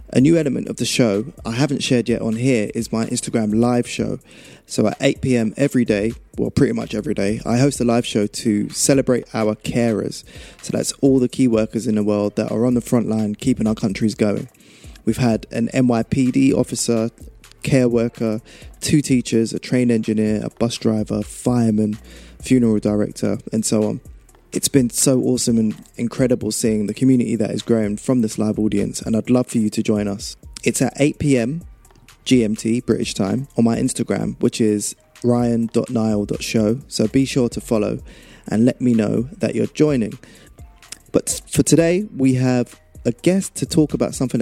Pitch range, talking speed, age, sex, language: 110-125 Hz, 185 wpm, 20-39, male, English